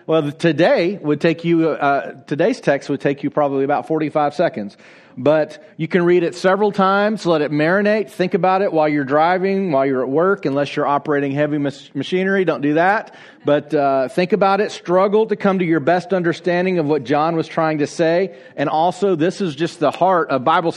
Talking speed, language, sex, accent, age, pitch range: 225 wpm, English, male, American, 40-59, 145-180 Hz